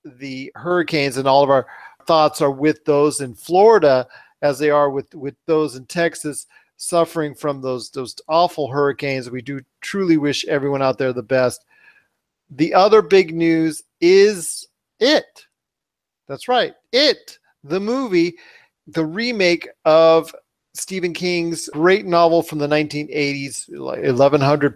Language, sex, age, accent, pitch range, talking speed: English, male, 40-59, American, 140-175 Hz, 140 wpm